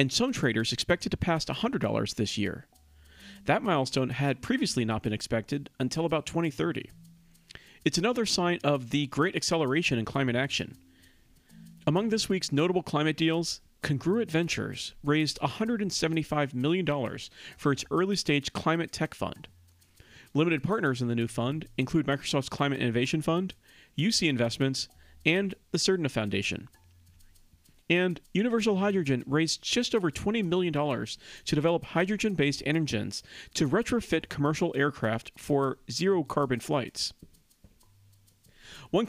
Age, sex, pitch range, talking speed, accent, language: 40-59, male, 120-170 Hz, 130 wpm, American, English